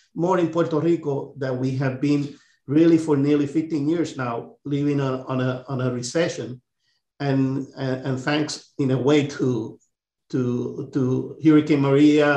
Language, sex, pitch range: English, male, 130-150 Hz